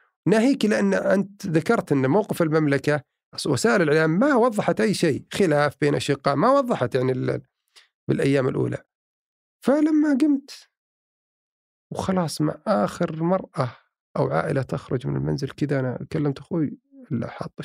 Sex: male